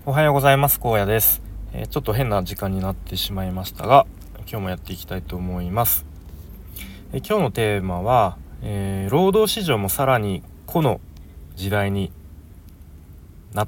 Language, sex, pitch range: Japanese, male, 90-110 Hz